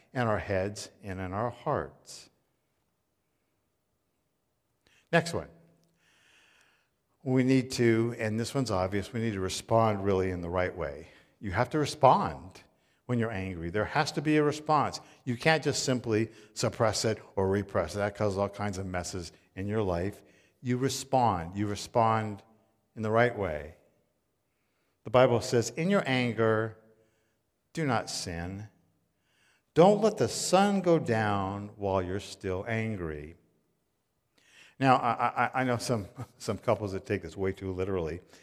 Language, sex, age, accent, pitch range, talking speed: English, male, 50-69, American, 95-120 Hz, 150 wpm